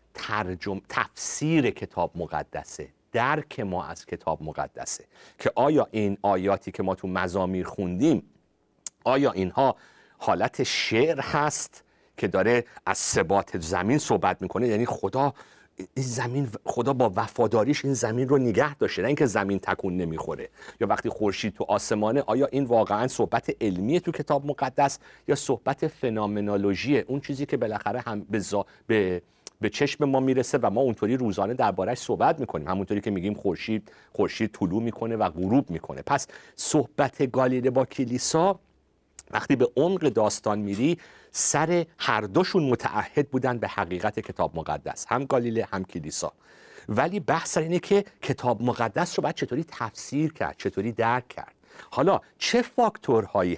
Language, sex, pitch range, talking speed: Persian, male, 100-140 Hz, 145 wpm